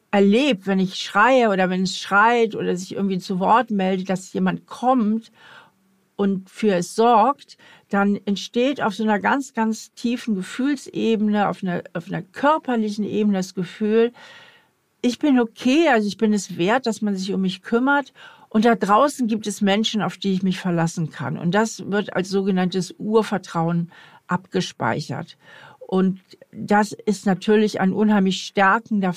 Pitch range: 185-215 Hz